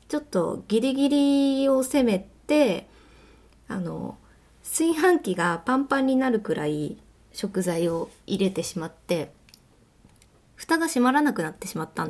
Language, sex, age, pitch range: Japanese, female, 20-39, 180-295 Hz